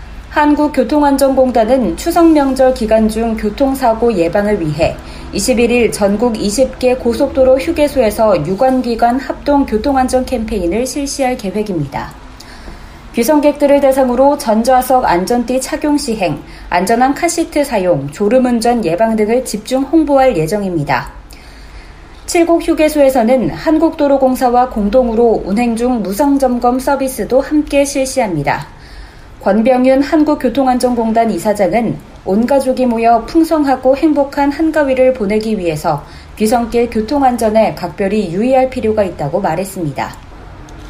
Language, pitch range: Korean, 215-275 Hz